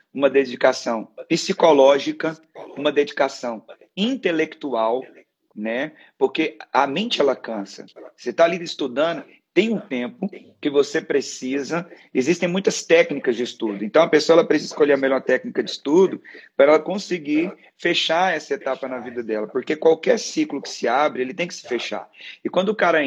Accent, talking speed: Brazilian, 160 wpm